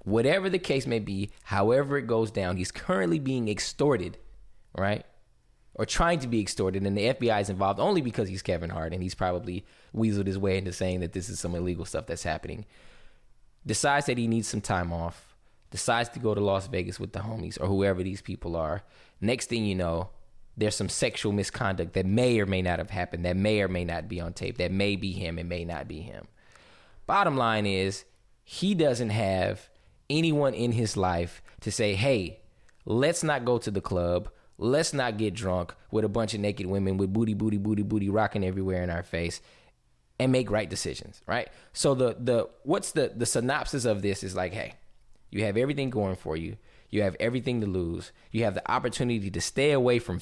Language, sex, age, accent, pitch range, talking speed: English, male, 20-39, American, 90-120 Hz, 205 wpm